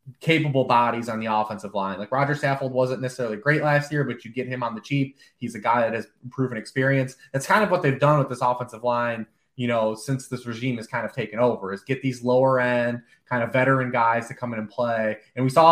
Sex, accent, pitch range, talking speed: male, American, 115-140 Hz, 250 wpm